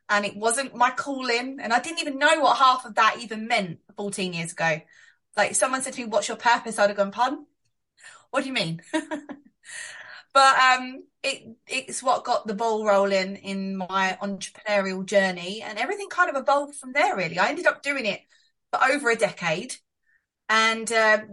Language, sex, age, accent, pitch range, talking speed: English, female, 30-49, British, 205-275 Hz, 185 wpm